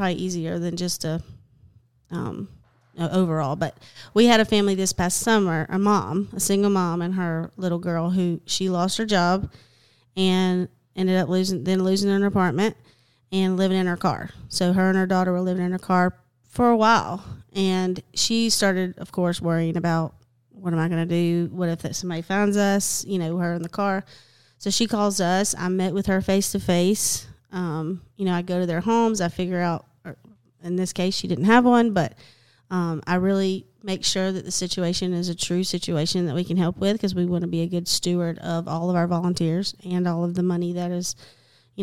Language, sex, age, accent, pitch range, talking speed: English, female, 30-49, American, 170-195 Hz, 210 wpm